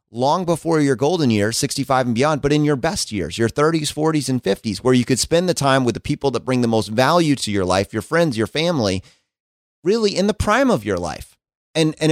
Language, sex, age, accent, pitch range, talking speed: English, male, 30-49, American, 105-145 Hz, 240 wpm